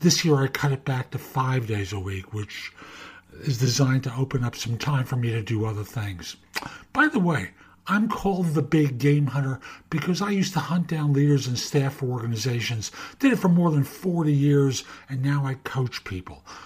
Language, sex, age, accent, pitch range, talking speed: English, male, 60-79, American, 115-160 Hz, 205 wpm